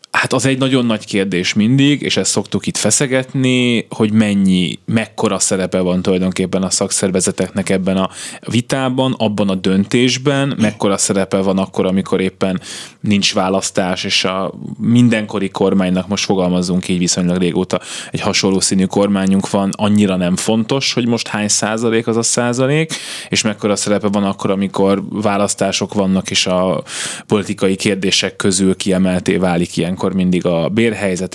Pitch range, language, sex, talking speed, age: 95-110 Hz, Hungarian, male, 150 wpm, 20-39